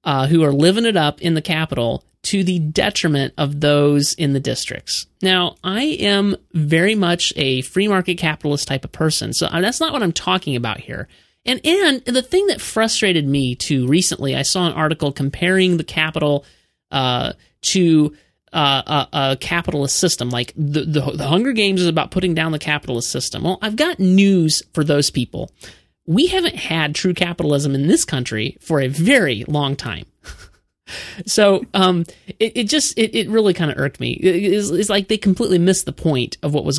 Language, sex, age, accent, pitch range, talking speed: English, male, 30-49, American, 140-185 Hz, 190 wpm